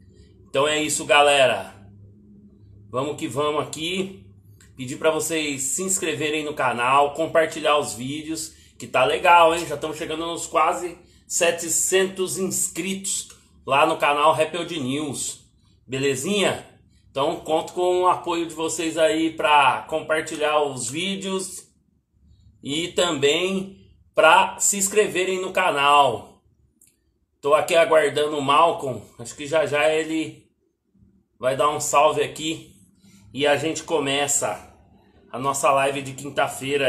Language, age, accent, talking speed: Portuguese, 30-49, Brazilian, 125 wpm